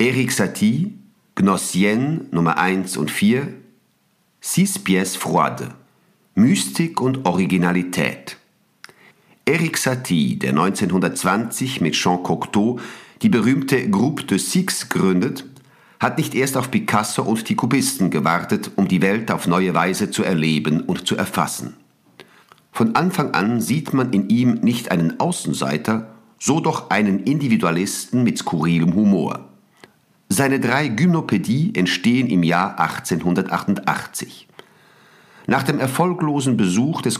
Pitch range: 90-135 Hz